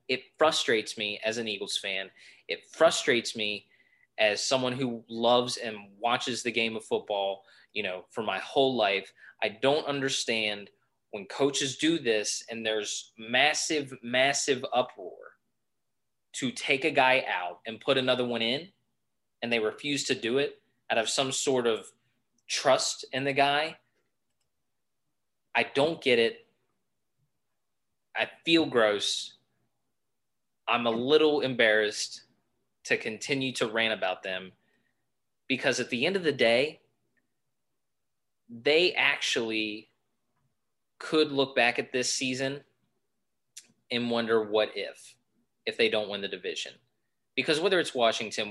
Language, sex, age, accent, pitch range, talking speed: English, male, 20-39, American, 110-140 Hz, 135 wpm